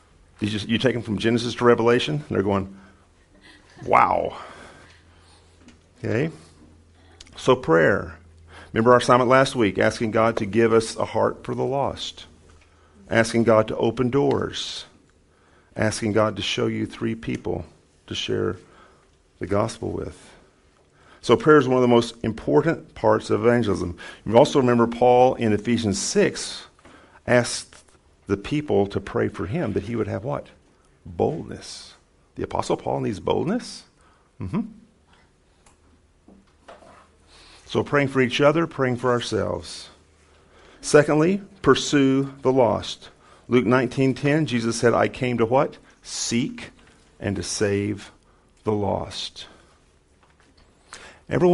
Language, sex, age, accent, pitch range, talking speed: English, male, 50-69, American, 85-125 Hz, 130 wpm